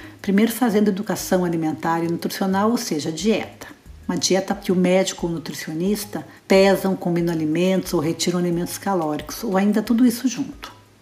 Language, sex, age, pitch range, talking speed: Portuguese, female, 60-79, 170-205 Hz, 160 wpm